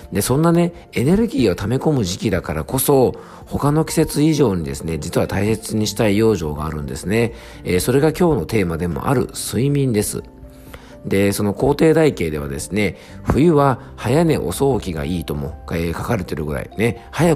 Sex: male